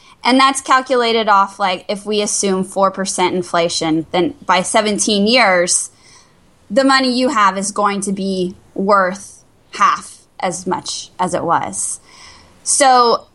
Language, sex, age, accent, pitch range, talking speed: English, female, 10-29, American, 195-245 Hz, 135 wpm